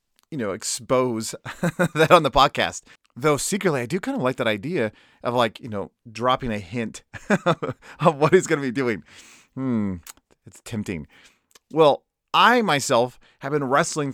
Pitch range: 120-160 Hz